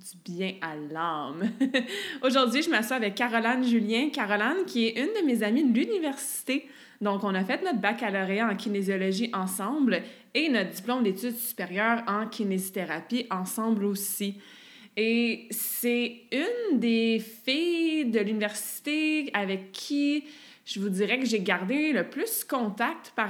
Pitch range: 200-255 Hz